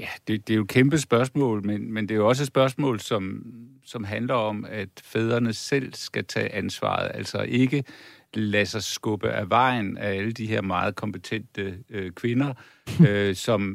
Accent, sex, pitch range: native, male, 100-125 Hz